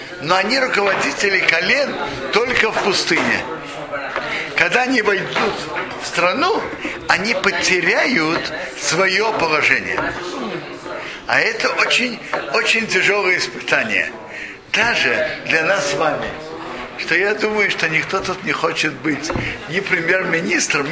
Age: 60-79